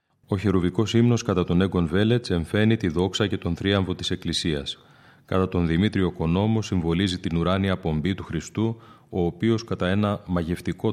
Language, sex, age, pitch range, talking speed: Greek, male, 30-49, 90-105 Hz, 165 wpm